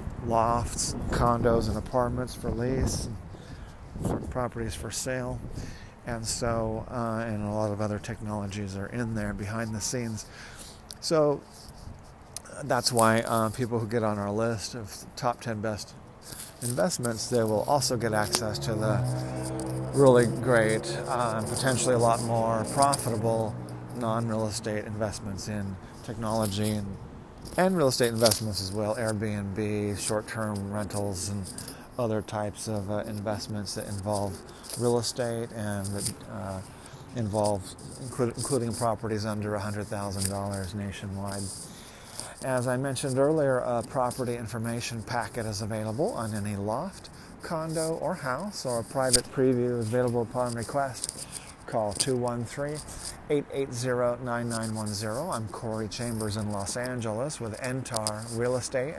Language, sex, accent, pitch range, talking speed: English, male, American, 105-125 Hz, 130 wpm